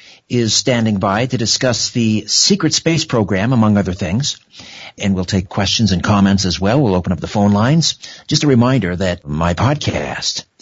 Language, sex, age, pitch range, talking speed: English, male, 50-69, 95-125 Hz, 180 wpm